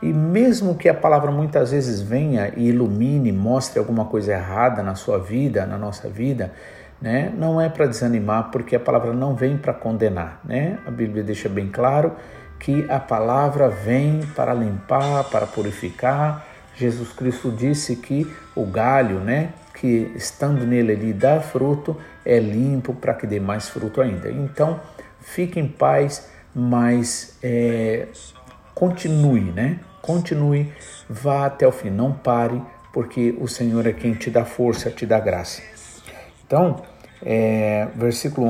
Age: 50-69